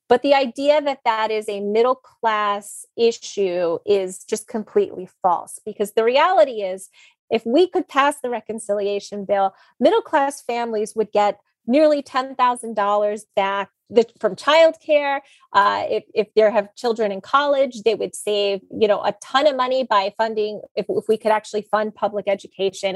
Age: 30-49